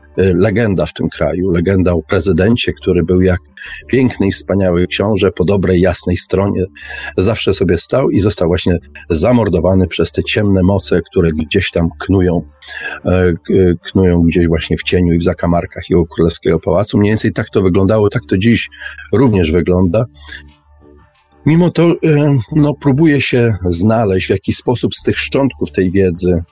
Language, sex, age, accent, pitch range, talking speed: Polish, male, 40-59, native, 85-105 Hz, 155 wpm